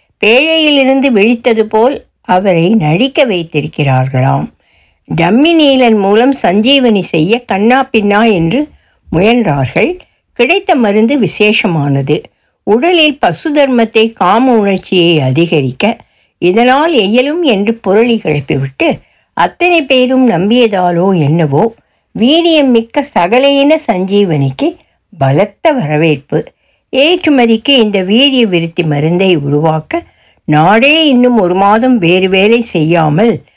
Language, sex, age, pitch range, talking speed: Tamil, female, 60-79, 170-255 Hz, 90 wpm